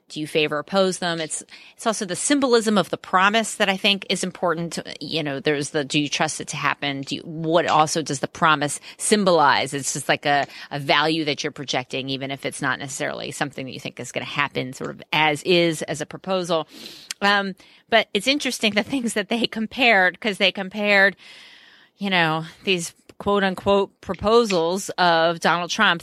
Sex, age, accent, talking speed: female, 30-49, American, 200 wpm